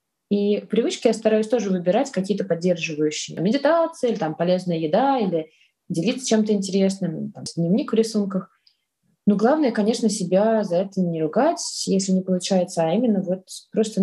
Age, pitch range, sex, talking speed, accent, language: 20-39, 180-220 Hz, female, 140 wpm, native, Russian